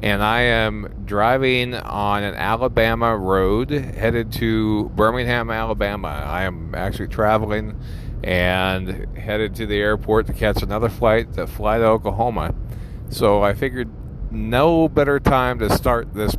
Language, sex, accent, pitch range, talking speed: English, male, American, 100-120 Hz, 140 wpm